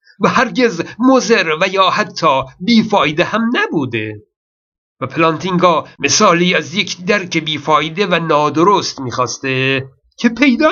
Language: Persian